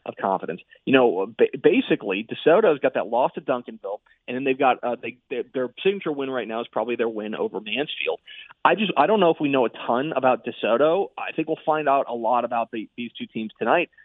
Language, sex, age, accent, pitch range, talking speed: English, male, 30-49, American, 115-155 Hz, 220 wpm